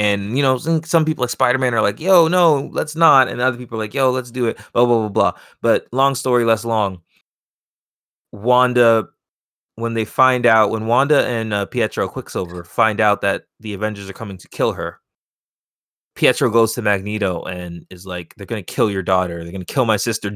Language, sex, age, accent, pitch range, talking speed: English, male, 20-39, American, 95-120 Hz, 210 wpm